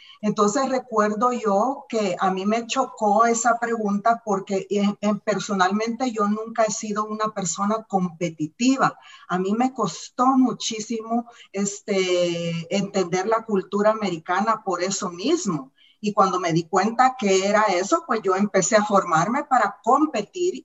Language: English